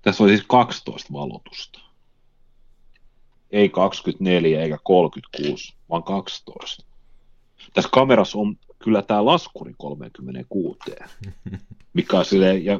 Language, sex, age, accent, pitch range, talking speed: Finnish, male, 30-49, native, 75-100 Hz, 105 wpm